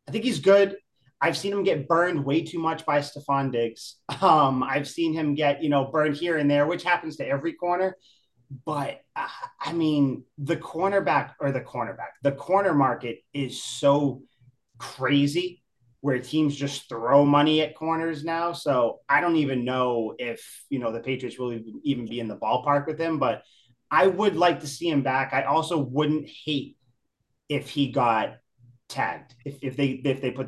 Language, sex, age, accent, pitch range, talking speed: English, male, 30-49, American, 120-155 Hz, 185 wpm